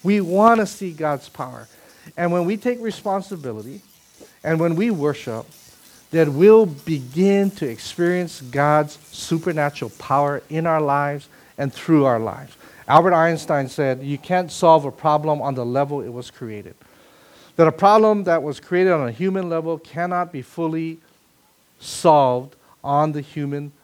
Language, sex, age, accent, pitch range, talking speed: English, male, 50-69, American, 145-200 Hz, 155 wpm